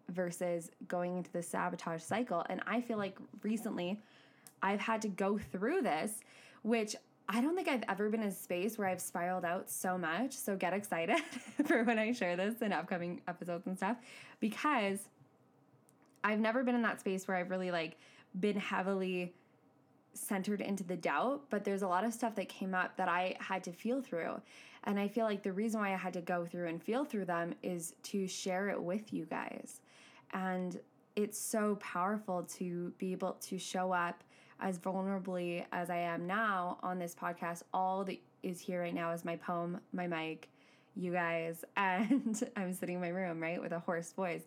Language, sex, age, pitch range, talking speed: English, female, 10-29, 175-210 Hz, 195 wpm